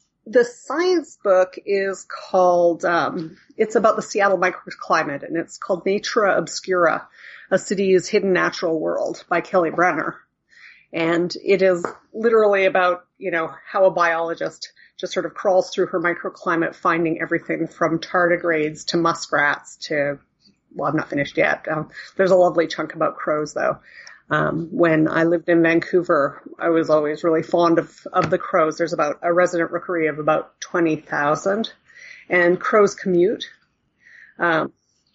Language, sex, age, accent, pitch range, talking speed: English, female, 30-49, American, 165-200 Hz, 150 wpm